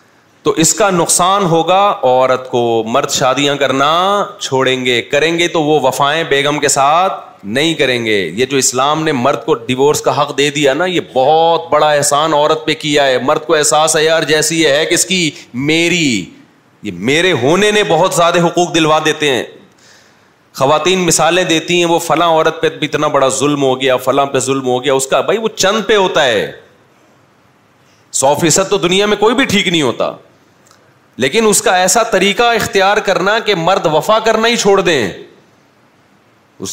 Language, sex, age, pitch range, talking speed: Urdu, male, 30-49, 140-175 Hz, 190 wpm